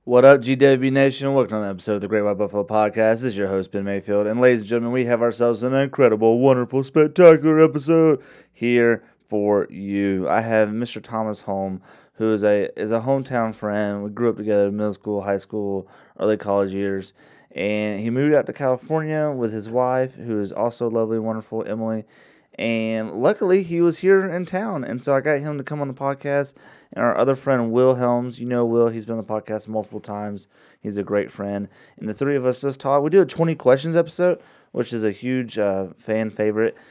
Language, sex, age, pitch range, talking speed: English, male, 20-39, 105-135 Hz, 215 wpm